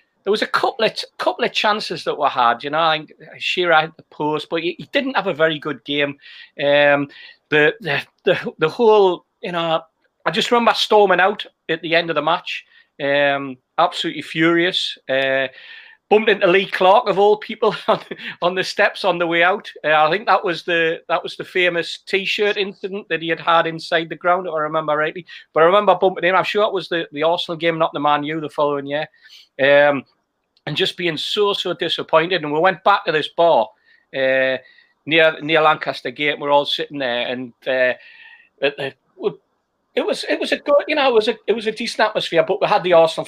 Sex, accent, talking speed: male, British, 220 wpm